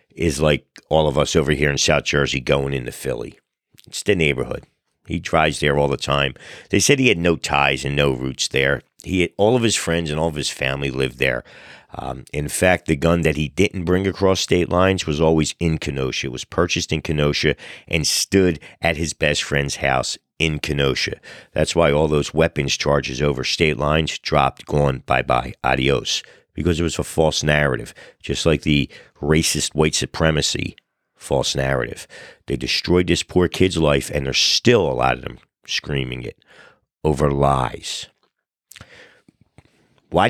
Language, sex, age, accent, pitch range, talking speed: English, male, 50-69, American, 70-95 Hz, 180 wpm